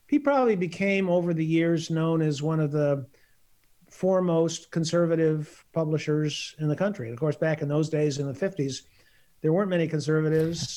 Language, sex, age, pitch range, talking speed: English, male, 50-69, 150-170 Hz, 165 wpm